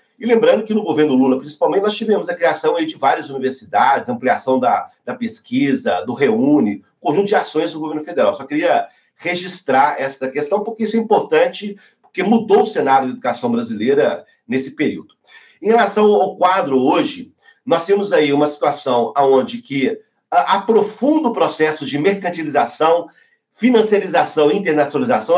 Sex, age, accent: male, 40-59, Brazilian